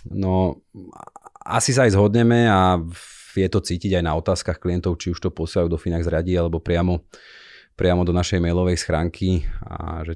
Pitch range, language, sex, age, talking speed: 85-95 Hz, Slovak, male, 30-49, 170 wpm